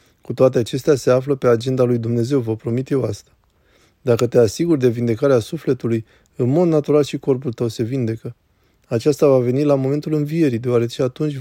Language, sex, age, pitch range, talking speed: Romanian, male, 20-39, 115-140 Hz, 185 wpm